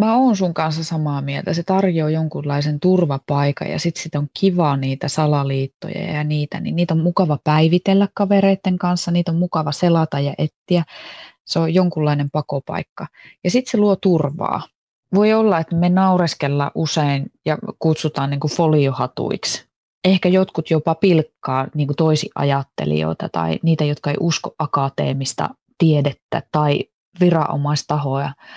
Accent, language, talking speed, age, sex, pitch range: native, Finnish, 140 wpm, 20-39, female, 150-190 Hz